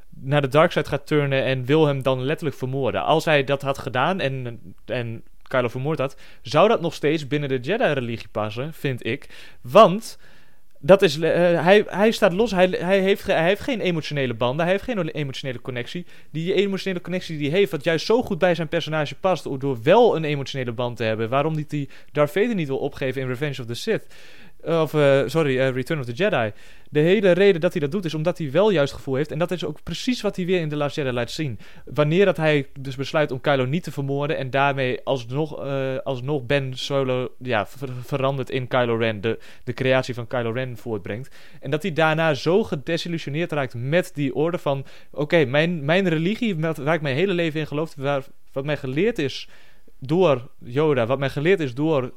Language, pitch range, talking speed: Dutch, 130-170 Hz, 215 wpm